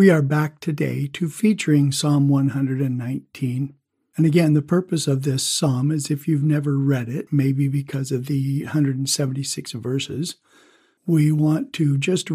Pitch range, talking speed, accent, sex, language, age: 135-155 Hz, 150 wpm, American, male, English, 60-79